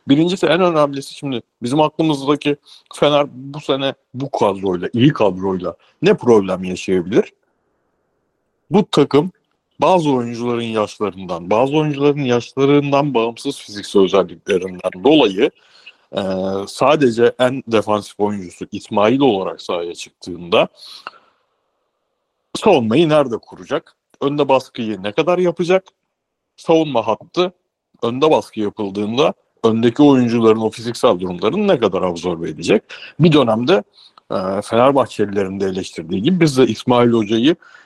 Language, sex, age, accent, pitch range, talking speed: Turkish, male, 60-79, native, 105-155 Hz, 110 wpm